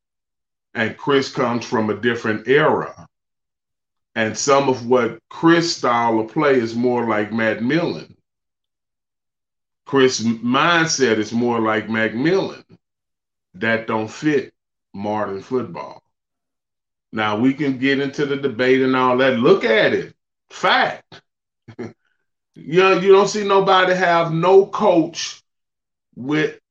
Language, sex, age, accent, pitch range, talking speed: English, male, 30-49, American, 110-150 Hz, 125 wpm